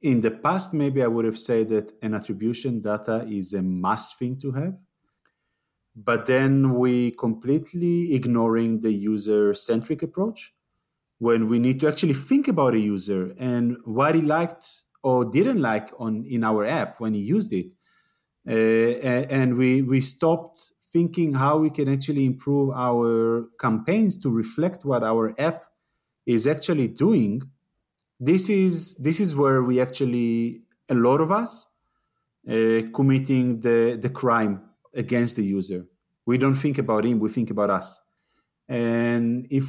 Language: English